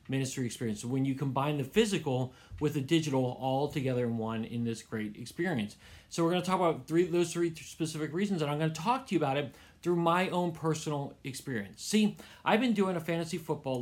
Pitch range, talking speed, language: 120-165 Hz, 220 wpm, English